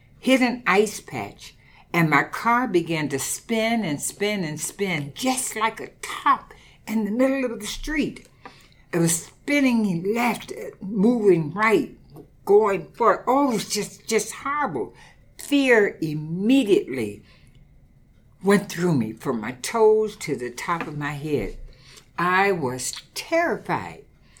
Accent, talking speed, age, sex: American, 135 wpm, 60-79, female